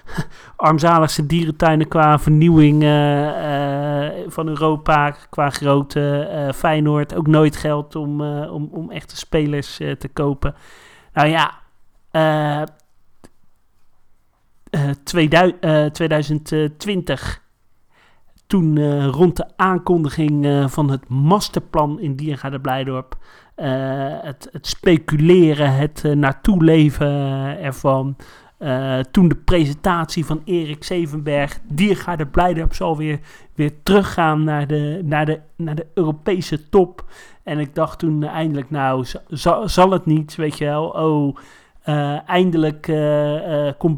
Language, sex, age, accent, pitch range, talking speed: Dutch, male, 40-59, Dutch, 145-165 Hz, 125 wpm